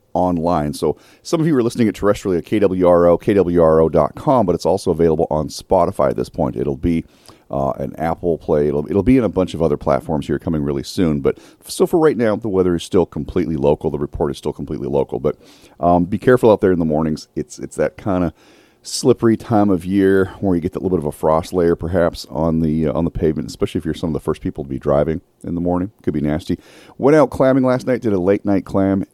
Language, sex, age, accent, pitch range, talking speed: English, male, 40-59, American, 80-105 Hz, 245 wpm